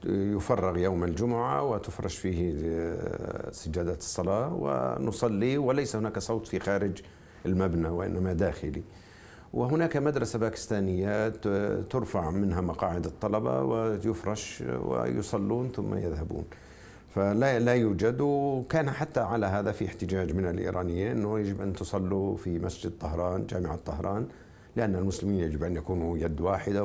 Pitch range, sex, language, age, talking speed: 90-115 Hz, male, Arabic, 50-69, 120 wpm